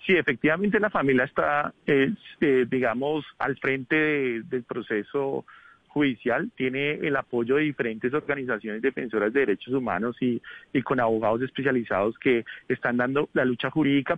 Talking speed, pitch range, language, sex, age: 140 wpm, 130-170 Hz, Spanish, male, 40-59